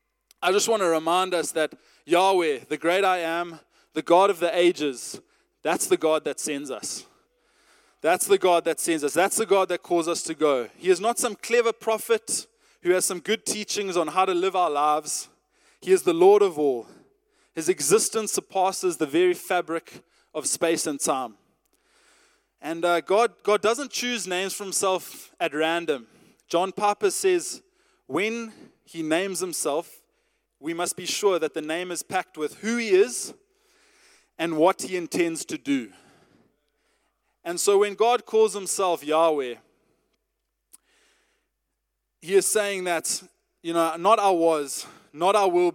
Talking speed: 165 wpm